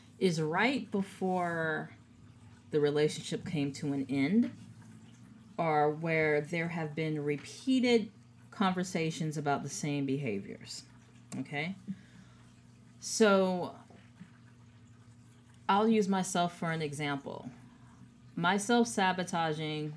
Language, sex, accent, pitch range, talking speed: English, female, American, 140-190 Hz, 90 wpm